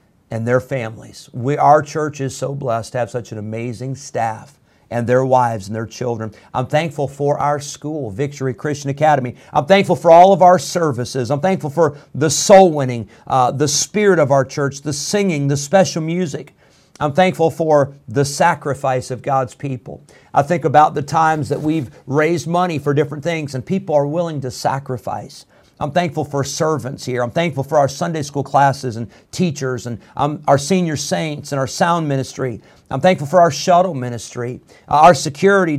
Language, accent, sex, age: English, American, male, 50-69